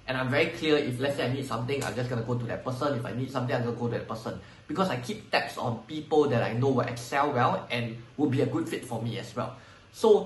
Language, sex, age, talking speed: English, male, 20-39, 305 wpm